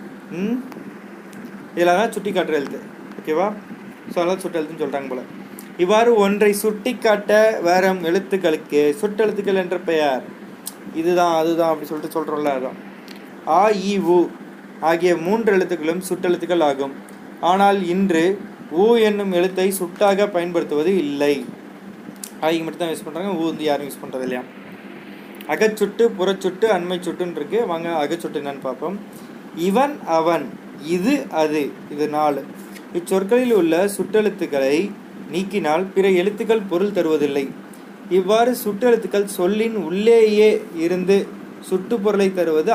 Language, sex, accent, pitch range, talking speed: Tamil, male, native, 165-210 Hz, 110 wpm